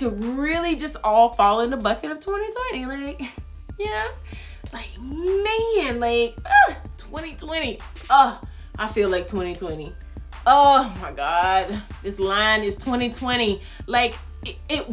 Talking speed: 140 wpm